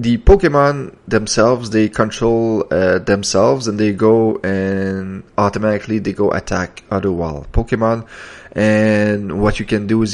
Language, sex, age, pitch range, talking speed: English, male, 20-39, 95-110 Hz, 140 wpm